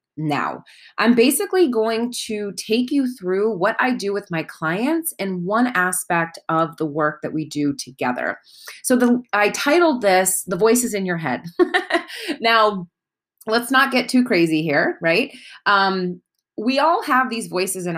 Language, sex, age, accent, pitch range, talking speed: English, female, 30-49, American, 175-230 Hz, 165 wpm